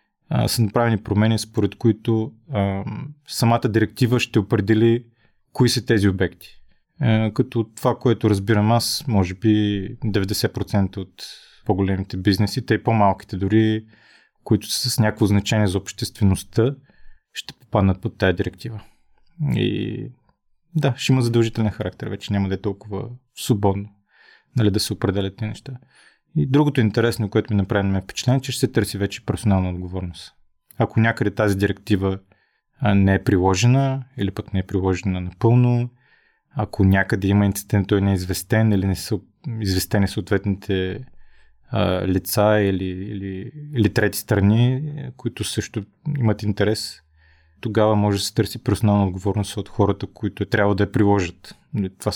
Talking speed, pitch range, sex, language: 145 wpm, 100-115 Hz, male, Bulgarian